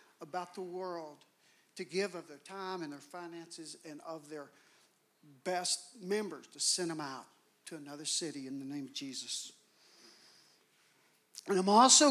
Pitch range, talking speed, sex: 160-205 Hz, 155 wpm, male